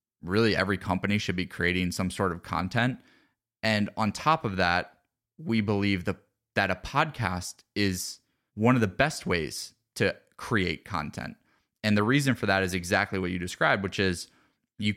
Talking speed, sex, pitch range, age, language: 170 wpm, male, 95-125 Hz, 20-39, English